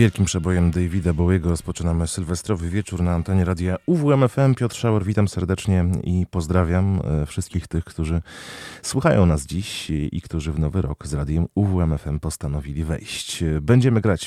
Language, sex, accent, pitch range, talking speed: Polish, male, native, 75-95 Hz, 145 wpm